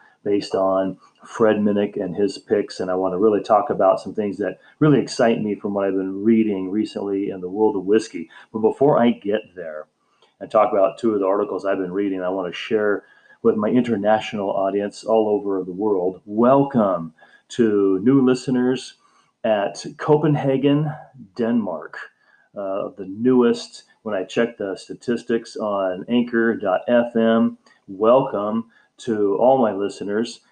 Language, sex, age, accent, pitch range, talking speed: English, male, 40-59, American, 100-115 Hz, 155 wpm